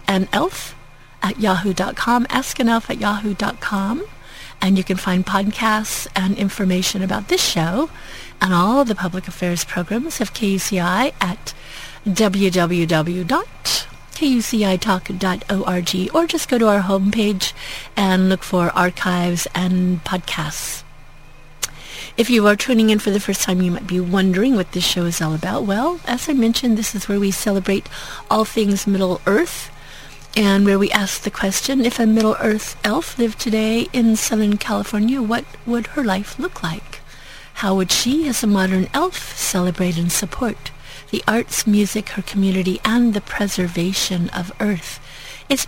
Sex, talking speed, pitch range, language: female, 150 wpm, 185-225 Hz, English